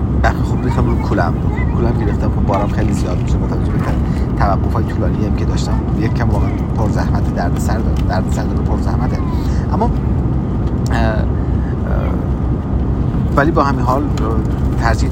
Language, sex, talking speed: Persian, male, 140 wpm